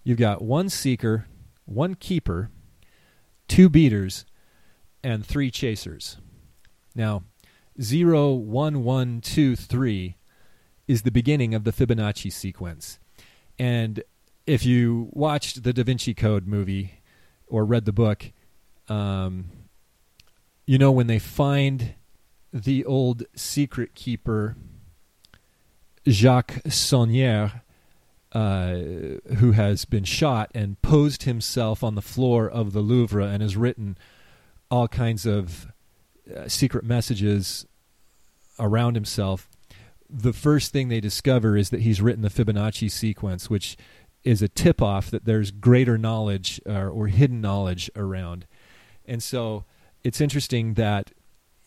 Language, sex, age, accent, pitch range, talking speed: English, male, 30-49, American, 100-125 Hz, 120 wpm